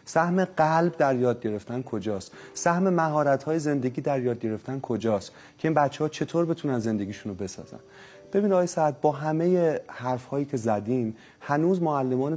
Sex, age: male, 30-49